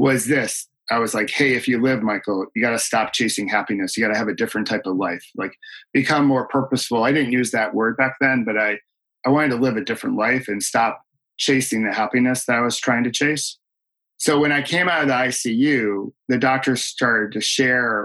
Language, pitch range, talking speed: English, 110-135 Hz, 230 wpm